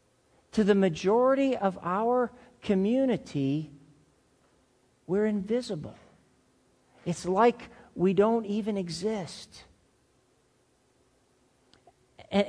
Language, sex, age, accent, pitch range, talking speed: English, male, 50-69, American, 195-245 Hz, 70 wpm